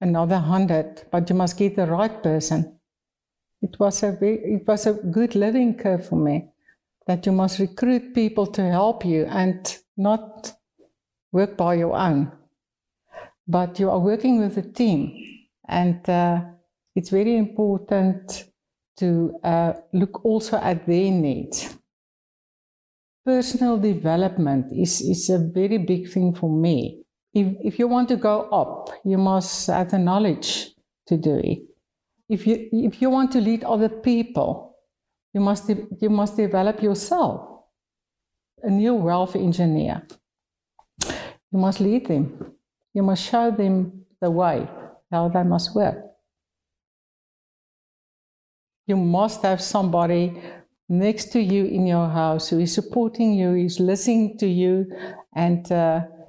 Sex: female